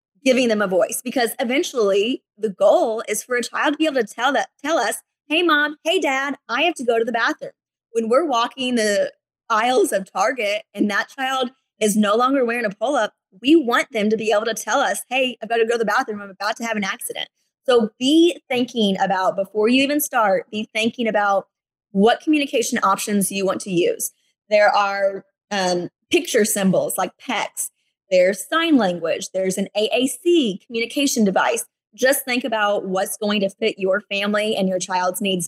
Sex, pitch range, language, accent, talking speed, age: female, 195-255 Hz, English, American, 195 wpm, 20-39